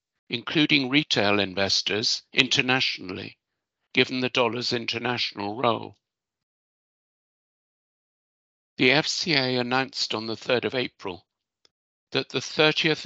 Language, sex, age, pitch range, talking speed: English, male, 60-79, 115-140 Hz, 90 wpm